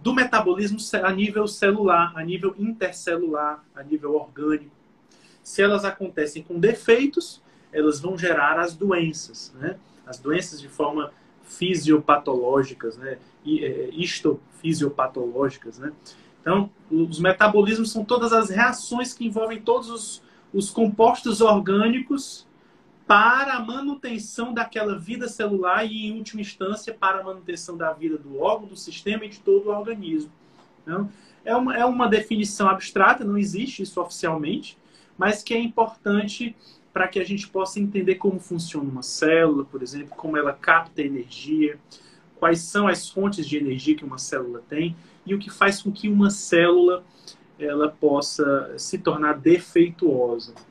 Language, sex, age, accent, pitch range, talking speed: Portuguese, male, 20-39, Brazilian, 155-215 Hz, 140 wpm